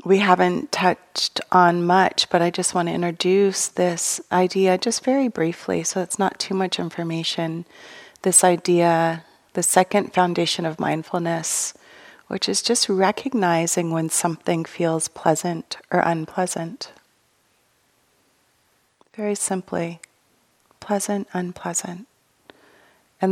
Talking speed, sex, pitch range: 115 wpm, female, 170-190 Hz